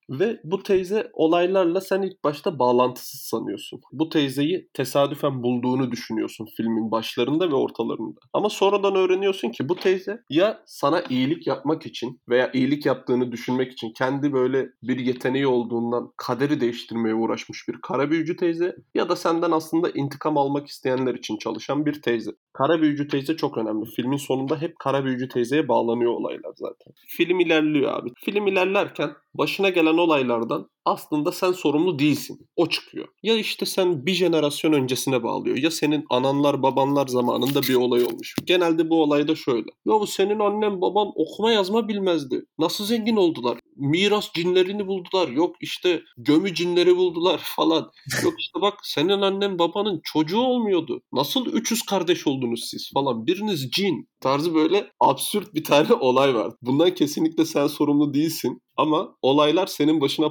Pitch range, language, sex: 135-195 Hz, Turkish, male